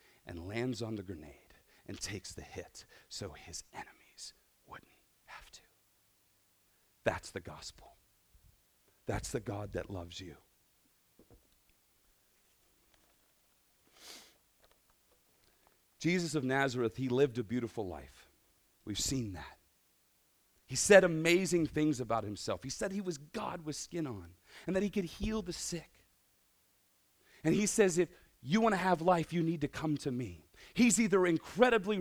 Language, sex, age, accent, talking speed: English, male, 40-59, American, 140 wpm